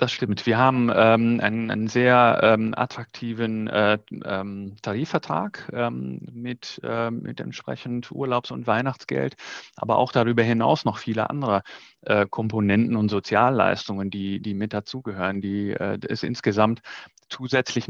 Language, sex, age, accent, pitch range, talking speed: German, male, 30-49, German, 100-115 Hz, 135 wpm